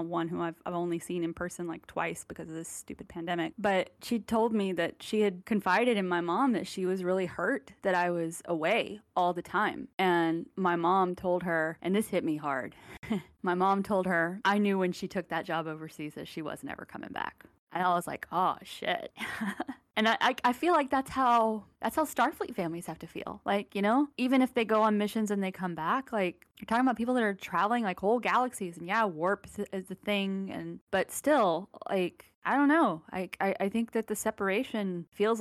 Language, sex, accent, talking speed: English, female, American, 225 wpm